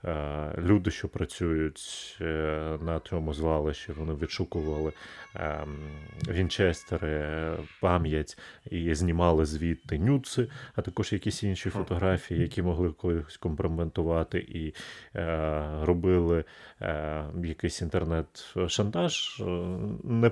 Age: 30-49